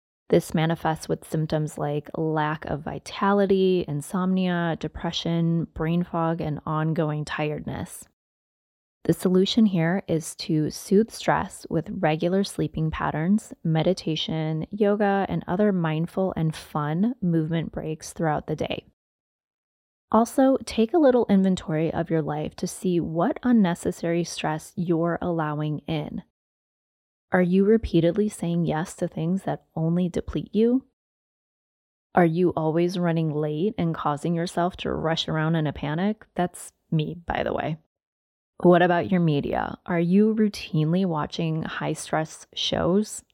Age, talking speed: 20-39, 130 wpm